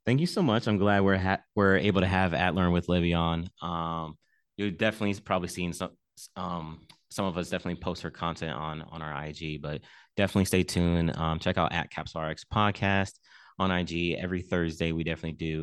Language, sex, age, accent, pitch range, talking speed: English, male, 20-39, American, 80-90 Hz, 200 wpm